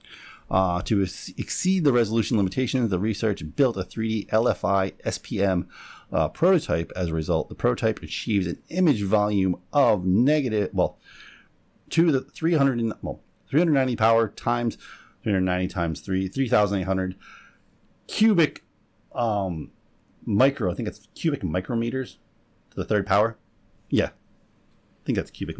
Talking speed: 150 wpm